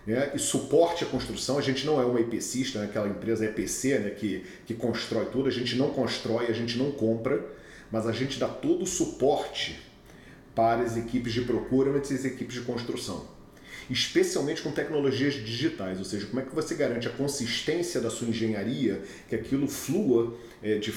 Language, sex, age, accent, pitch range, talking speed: Portuguese, male, 40-59, Brazilian, 115-135 Hz, 185 wpm